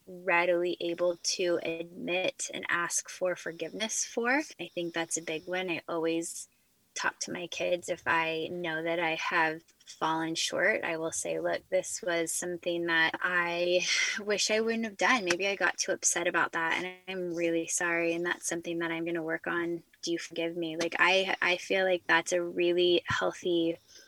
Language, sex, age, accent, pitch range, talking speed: English, female, 10-29, American, 165-185 Hz, 190 wpm